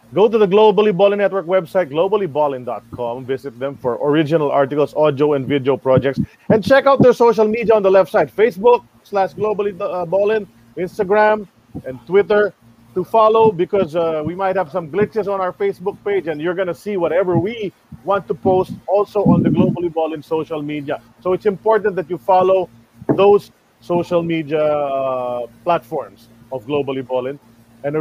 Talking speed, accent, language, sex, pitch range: 170 wpm, Filipino, English, male, 140-195 Hz